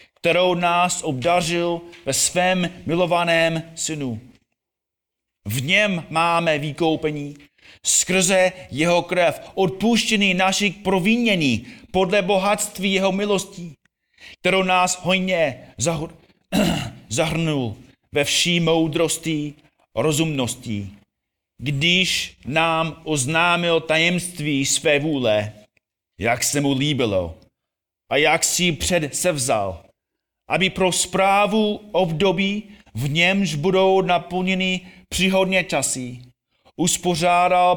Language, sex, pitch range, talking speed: Czech, male, 145-180 Hz, 90 wpm